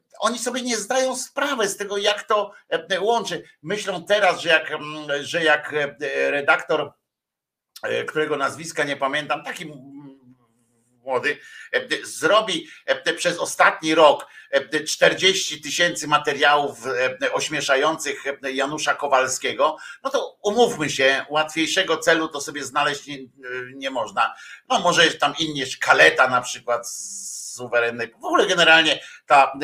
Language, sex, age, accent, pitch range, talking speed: Polish, male, 50-69, native, 130-165 Hz, 120 wpm